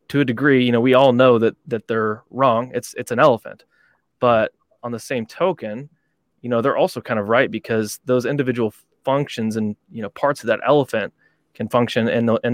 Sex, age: male, 20-39